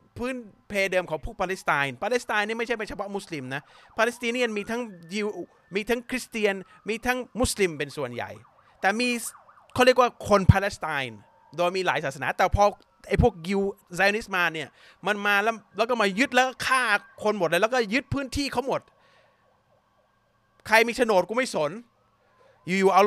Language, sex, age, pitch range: Thai, male, 30-49, 175-230 Hz